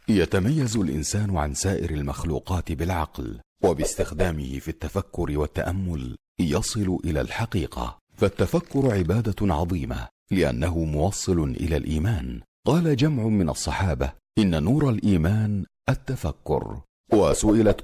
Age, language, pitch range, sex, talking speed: 50-69, Arabic, 85-115 Hz, male, 100 wpm